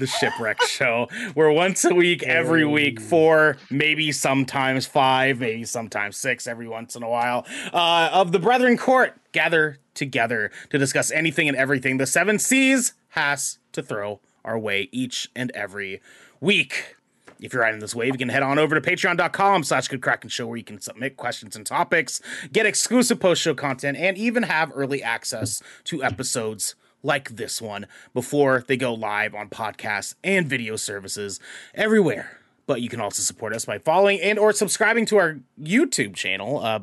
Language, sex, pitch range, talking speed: English, male, 115-175 Hz, 170 wpm